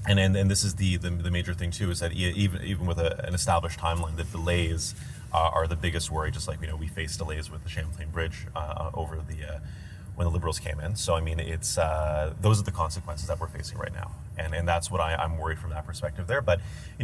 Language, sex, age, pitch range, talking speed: English, male, 30-49, 80-100 Hz, 260 wpm